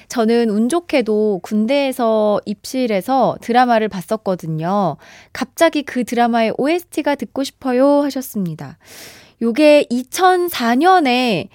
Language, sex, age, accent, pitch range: Korean, female, 20-39, native, 200-300 Hz